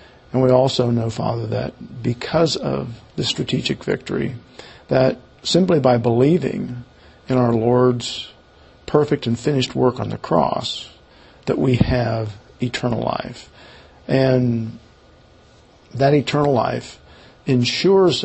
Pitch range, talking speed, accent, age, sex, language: 115-130 Hz, 115 wpm, American, 50-69, male, English